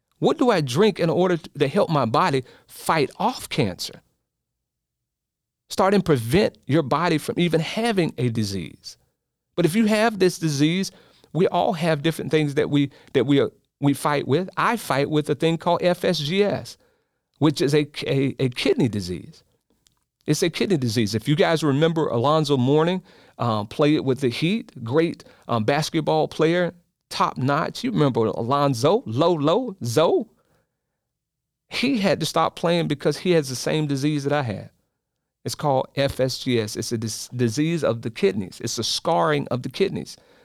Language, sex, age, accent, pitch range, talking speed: English, male, 40-59, American, 125-165 Hz, 165 wpm